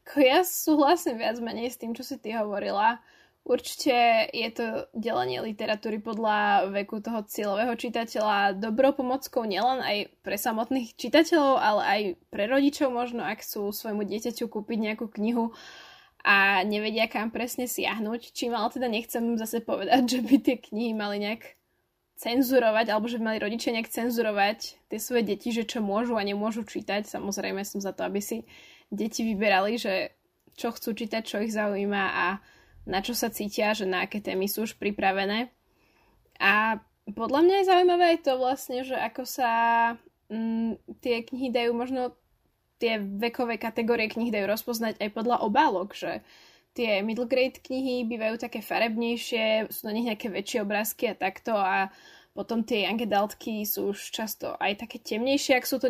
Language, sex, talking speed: Slovak, female, 165 wpm